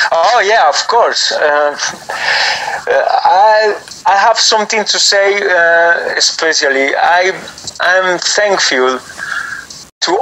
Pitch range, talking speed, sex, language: 140-185 Hz, 100 wpm, male, English